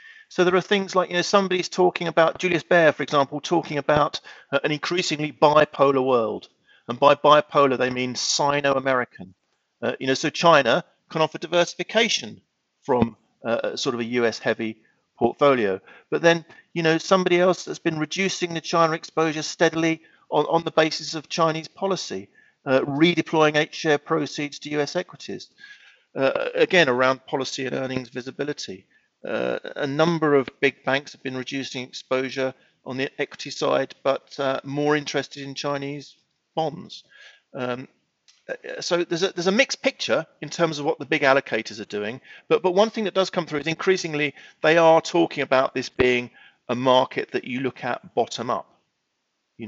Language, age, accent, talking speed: English, 50-69, British, 170 wpm